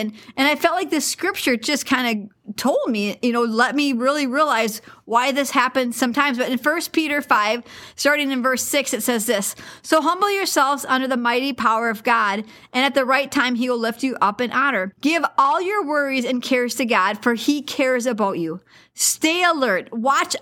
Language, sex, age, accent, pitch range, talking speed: English, female, 40-59, American, 235-290 Hz, 205 wpm